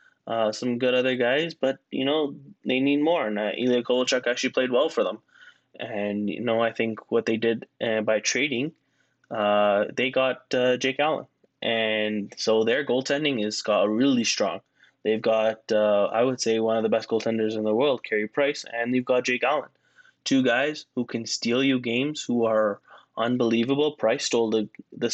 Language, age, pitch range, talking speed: English, 10-29, 110-135 Hz, 190 wpm